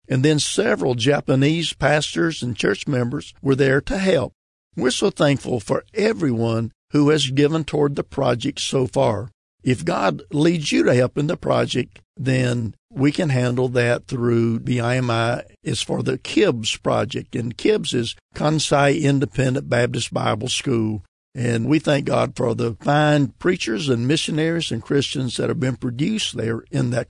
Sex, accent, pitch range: male, American, 120-150 Hz